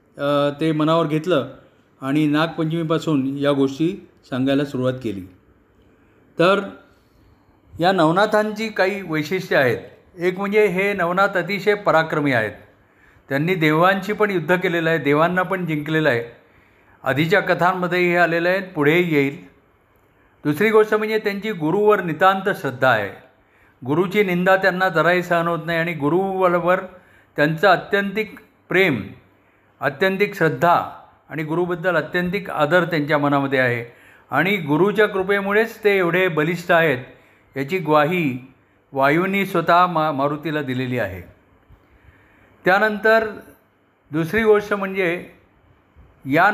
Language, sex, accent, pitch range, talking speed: Marathi, male, native, 135-190 Hz, 90 wpm